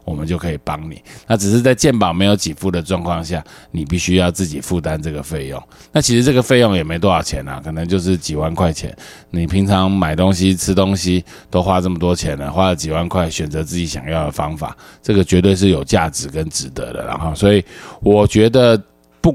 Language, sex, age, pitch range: Chinese, male, 20-39, 80-100 Hz